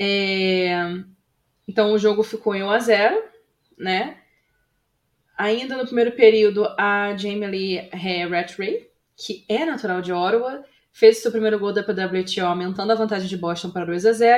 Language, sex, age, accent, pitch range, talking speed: Portuguese, female, 20-39, Brazilian, 180-225 Hz, 140 wpm